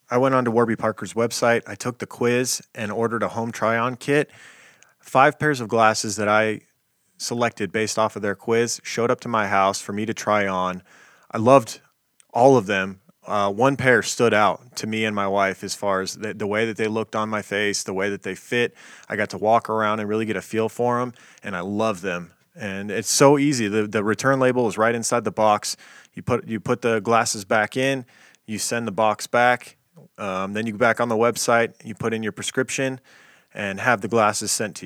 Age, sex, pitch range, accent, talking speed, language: 20-39, male, 105-125 Hz, American, 225 wpm, English